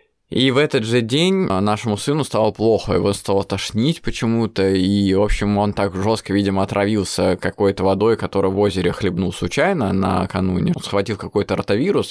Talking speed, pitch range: 165 wpm, 95-105 Hz